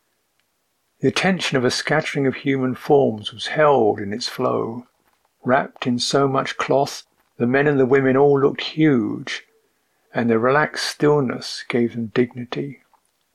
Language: English